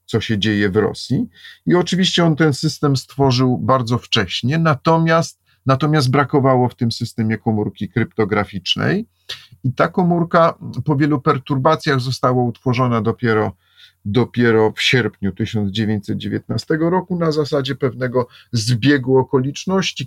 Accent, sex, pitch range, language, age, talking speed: native, male, 110-135 Hz, Polish, 40-59, 120 wpm